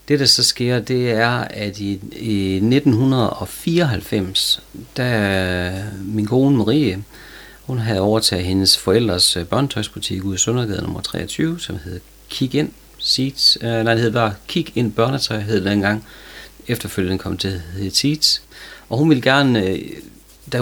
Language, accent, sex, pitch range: Danish, native, male, 100-125 Hz